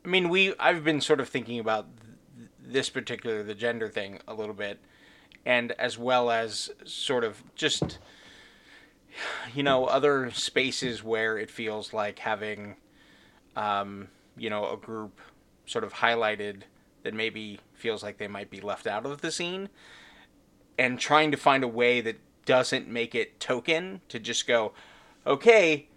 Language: English